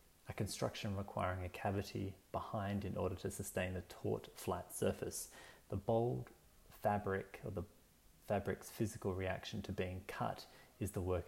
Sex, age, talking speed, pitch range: male, 30-49, 150 wpm, 90-110 Hz